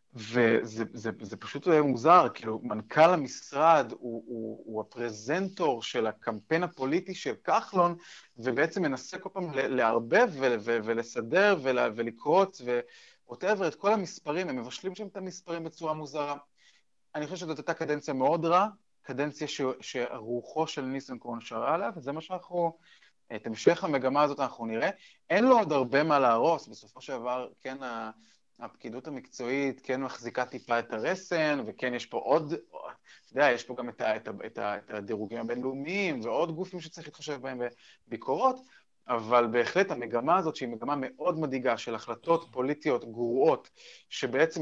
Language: Hebrew